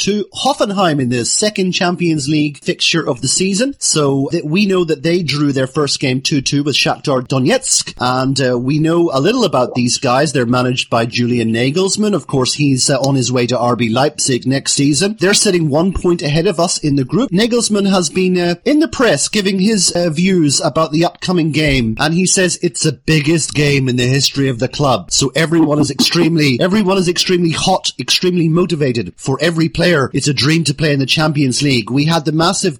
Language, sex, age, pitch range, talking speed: English, male, 30-49, 140-185 Hz, 210 wpm